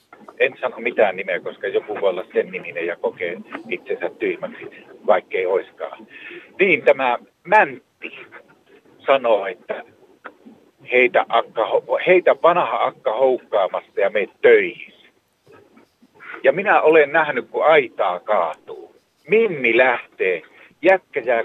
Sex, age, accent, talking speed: male, 50-69, native, 115 wpm